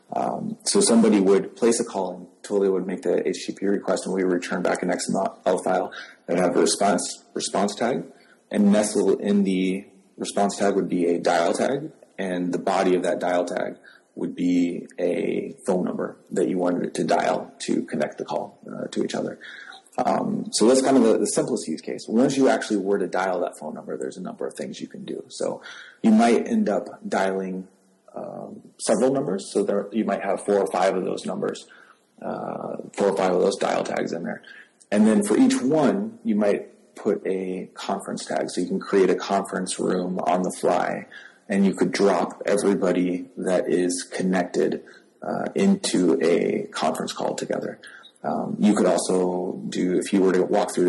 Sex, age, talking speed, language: male, 30-49, 200 wpm, English